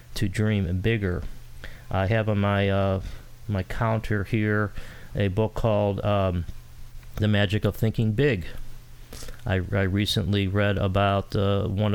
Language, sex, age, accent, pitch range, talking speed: English, male, 40-59, American, 95-115 Hz, 135 wpm